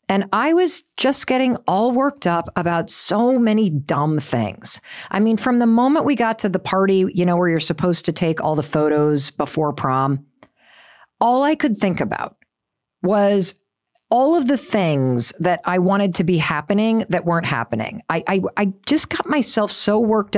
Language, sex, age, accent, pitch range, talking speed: English, female, 50-69, American, 165-235 Hz, 185 wpm